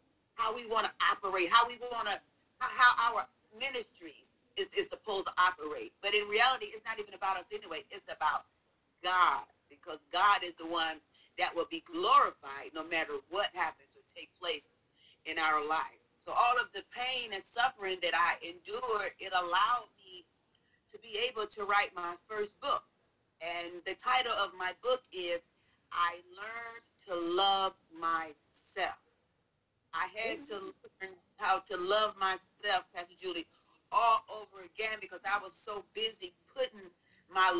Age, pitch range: 40-59, 180-255 Hz